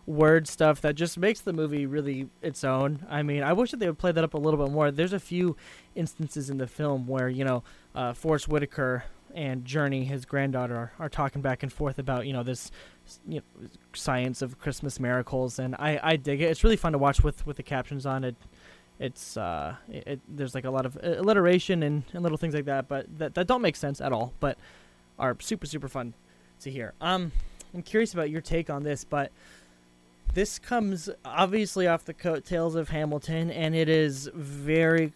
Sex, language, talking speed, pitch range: male, English, 215 wpm, 130-160 Hz